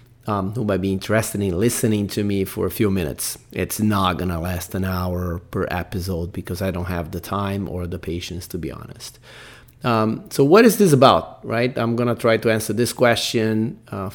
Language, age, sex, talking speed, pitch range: English, 30-49, male, 210 wpm, 100-125 Hz